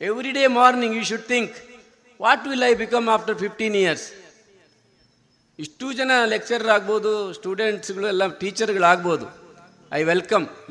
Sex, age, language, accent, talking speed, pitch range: male, 50-69, Kannada, native, 135 wpm, 185-240 Hz